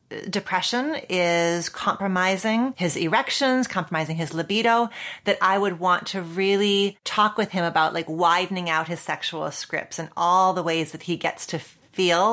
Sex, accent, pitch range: female, American, 165-210 Hz